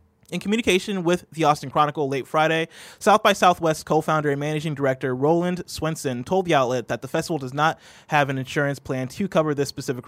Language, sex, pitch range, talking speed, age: English, male, 130-175 Hz, 195 wpm, 20-39